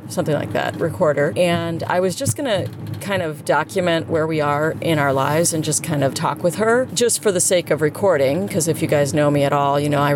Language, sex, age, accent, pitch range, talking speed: English, female, 30-49, American, 145-175 Hz, 250 wpm